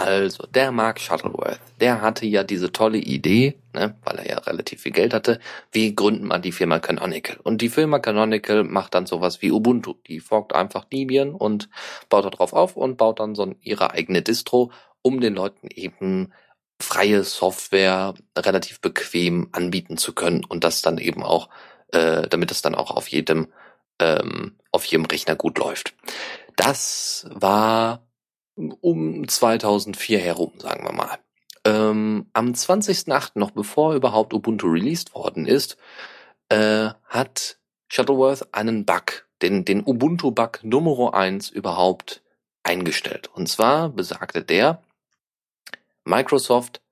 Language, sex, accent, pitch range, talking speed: German, male, German, 95-120 Hz, 145 wpm